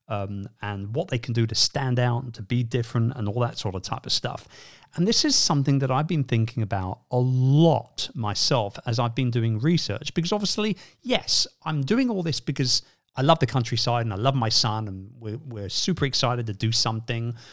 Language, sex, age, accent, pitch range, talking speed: English, male, 40-59, British, 110-145 Hz, 215 wpm